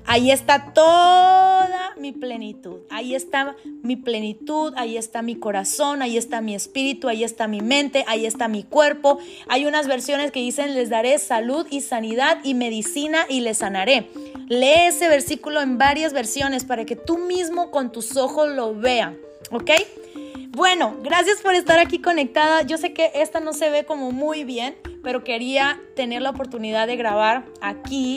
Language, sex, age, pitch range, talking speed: Spanish, female, 20-39, 235-300 Hz, 170 wpm